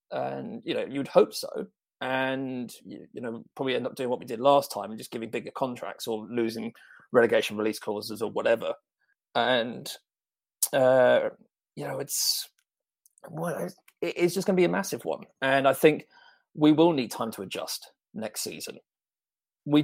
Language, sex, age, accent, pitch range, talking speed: English, male, 30-49, British, 130-195 Hz, 170 wpm